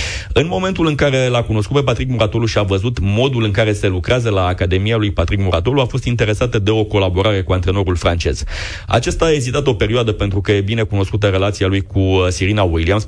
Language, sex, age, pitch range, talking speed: Romanian, male, 30-49, 95-120 Hz, 210 wpm